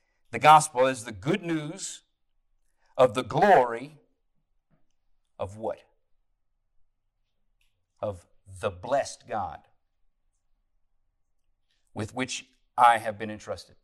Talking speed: 90 wpm